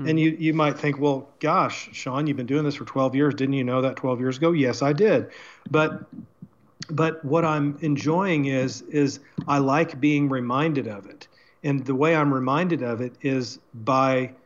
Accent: American